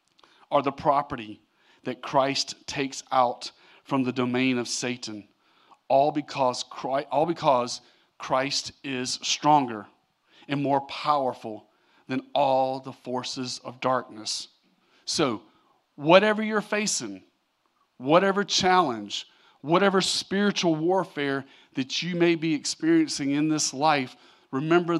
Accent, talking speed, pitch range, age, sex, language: American, 115 wpm, 135-190 Hz, 40-59, male, English